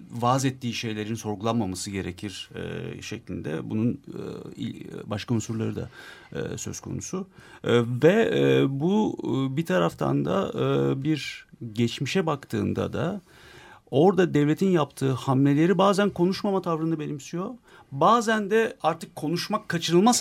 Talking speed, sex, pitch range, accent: 120 wpm, male, 115-165 Hz, native